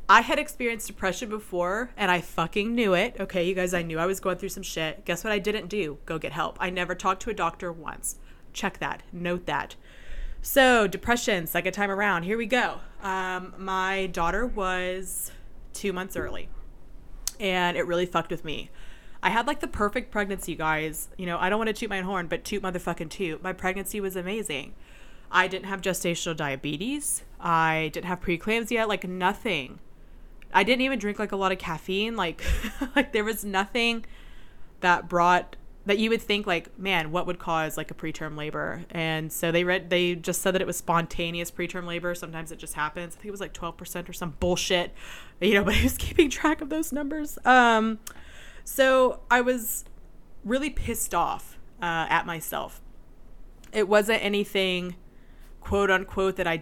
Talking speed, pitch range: 190 wpm, 170-210 Hz